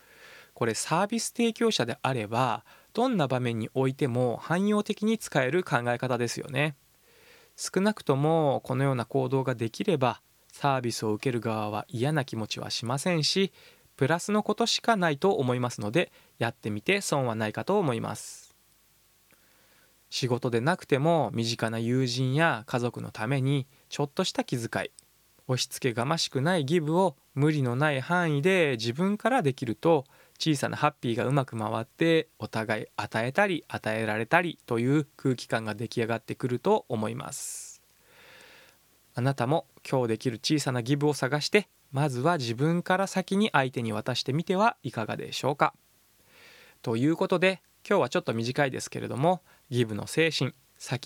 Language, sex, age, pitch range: Japanese, male, 20-39, 120-165 Hz